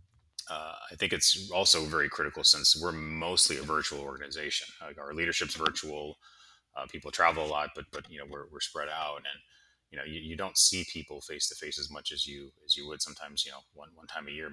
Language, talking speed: English, 230 wpm